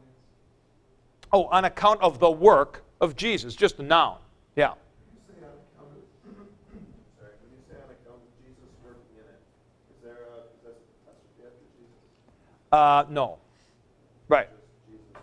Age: 50-69